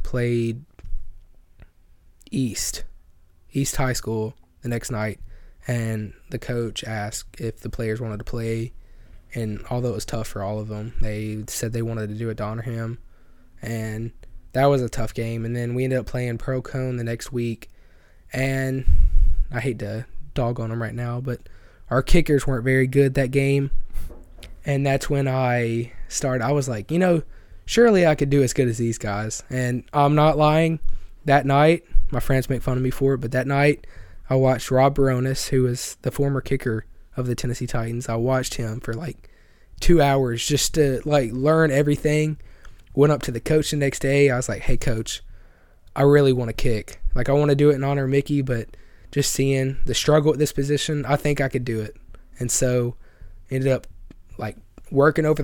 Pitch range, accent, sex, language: 105-140 Hz, American, male, English